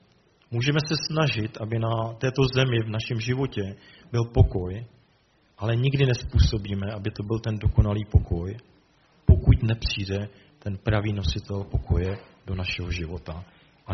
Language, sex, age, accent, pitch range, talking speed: Czech, male, 40-59, native, 100-125 Hz, 135 wpm